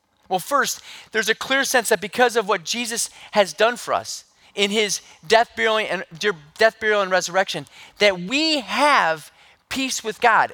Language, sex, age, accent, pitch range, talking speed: English, male, 30-49, American, 175-245 Hz, 175 wpm